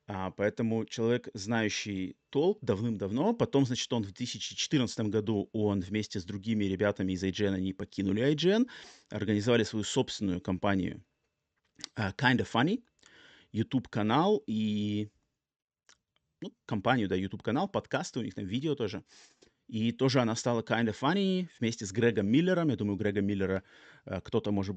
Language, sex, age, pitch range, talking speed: Russian, male, 30-49, 100-130 Hz, 140 wpm